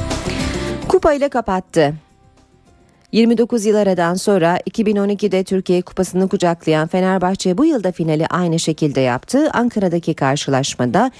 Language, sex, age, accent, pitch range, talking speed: Turkish, female, 40-59, native, 160-210 Hz, 105 wpm